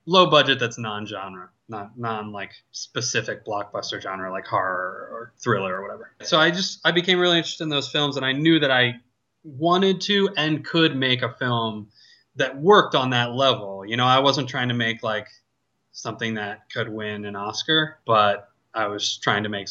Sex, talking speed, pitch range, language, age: male, 190 wpm, 115-135 Hz, English, 20-39